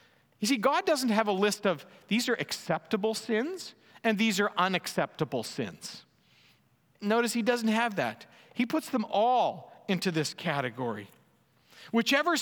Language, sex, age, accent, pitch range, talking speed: English, male, 50-69, American, 170-225 Hz, 145 wpm